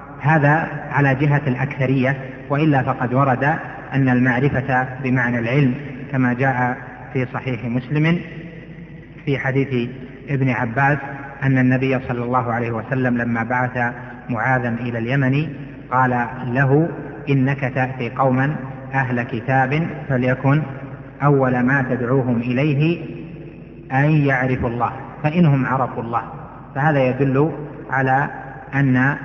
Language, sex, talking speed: Arabic, male, 110 wpm